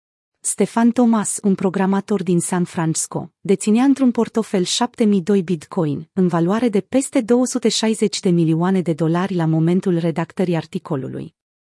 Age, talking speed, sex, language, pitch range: 30-49, 125 wpm, female, Romanian, 170-225 Hz